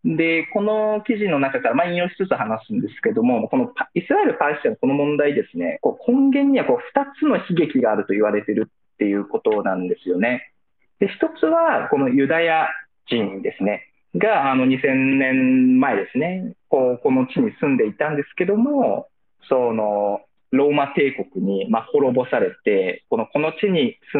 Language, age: Japanese, 20-39